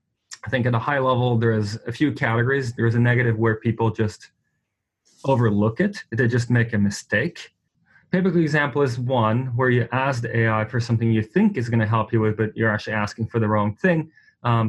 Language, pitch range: English, 110-130 Hz